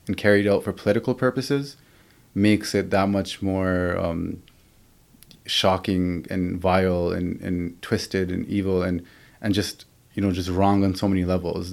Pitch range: 90-105 Hz